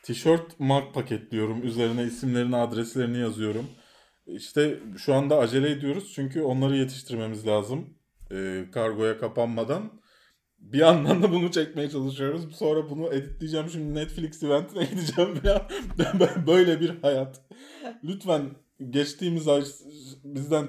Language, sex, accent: Turkish, male, native